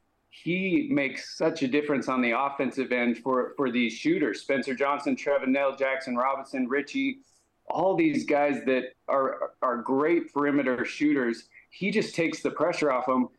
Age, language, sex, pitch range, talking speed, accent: 30-49, English, male, 140-185 Hz, 160 wpm, American